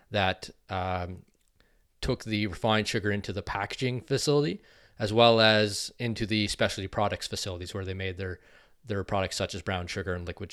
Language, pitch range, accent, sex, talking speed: English, 105-120 Hz, American, male, 170 wpm